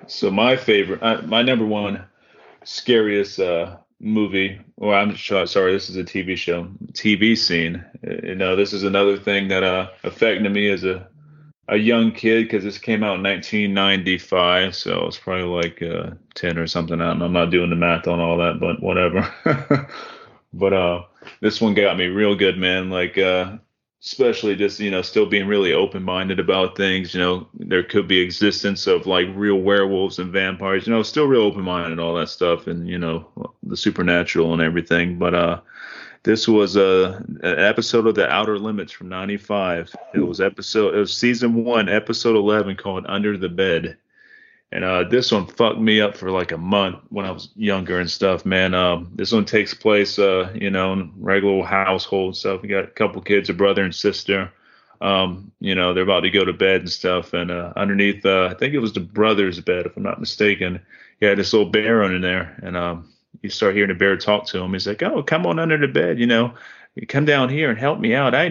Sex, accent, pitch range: male, American, 90-105 Hz